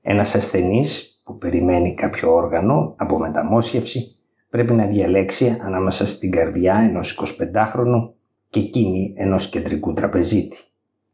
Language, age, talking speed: Greek, 50-69, 115 wpm